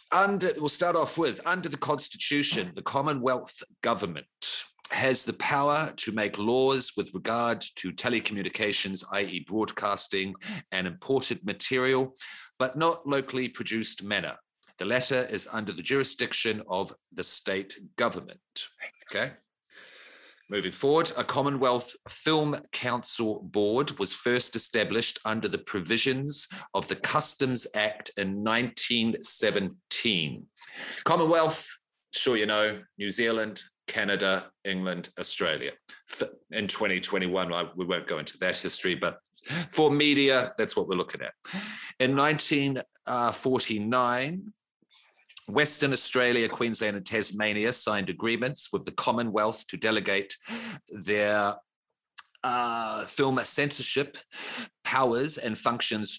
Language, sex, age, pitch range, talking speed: English, male, 40-59, 105-140 Hz, 115 wpm